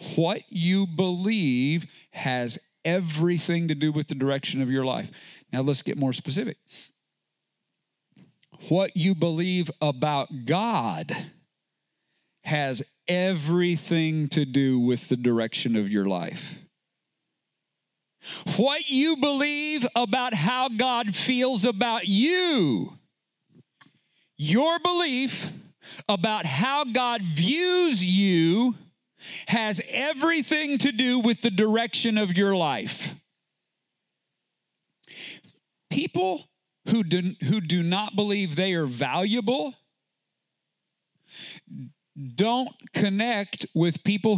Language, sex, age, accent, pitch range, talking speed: English, male, 40-59, American, 160-240 Hz, 95 wpm